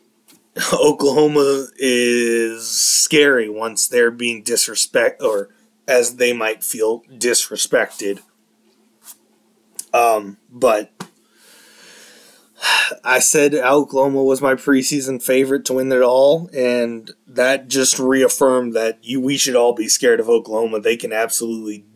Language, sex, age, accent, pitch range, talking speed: English, male, 20-39, American, 115-155 Hz, 115 wpm